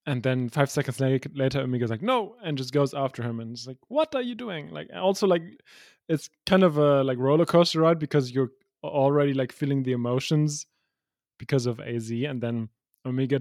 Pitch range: 115-145 Hz